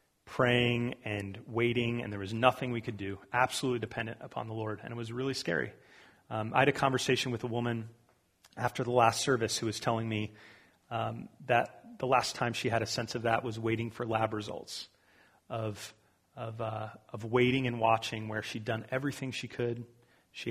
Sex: male